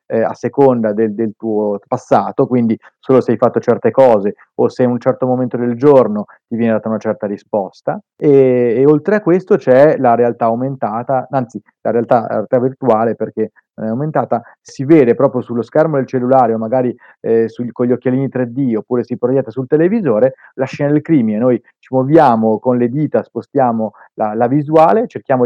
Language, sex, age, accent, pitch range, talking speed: Italian, male, 30-49, native, 115-150 Hz, 190 wpm